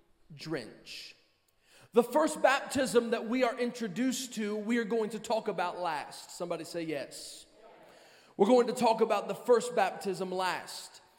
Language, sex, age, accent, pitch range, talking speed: English, male, 30-49, American, 200-265 Hz, 150 wpm